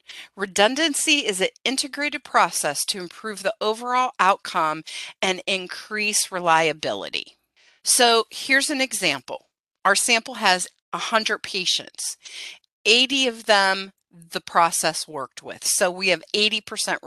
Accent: American